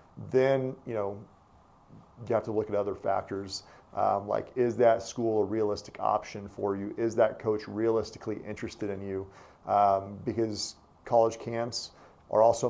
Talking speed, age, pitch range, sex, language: 155 wpm, 40-59, 105-115 Hz, male, English